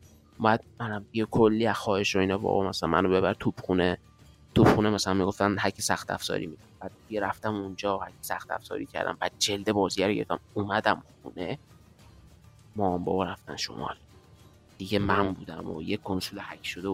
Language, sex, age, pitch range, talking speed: Persian, male, 30-49, 95-120 Hz, 160 wpm